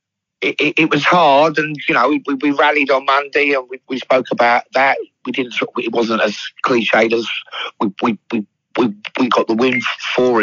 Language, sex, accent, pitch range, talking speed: English, male, British, 105-125 Hz, 200 wpm